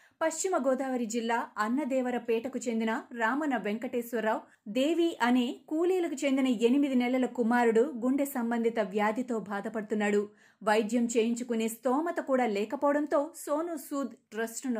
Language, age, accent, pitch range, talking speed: Telugu, 30-49, native, 220-270 Hz, 105 wpm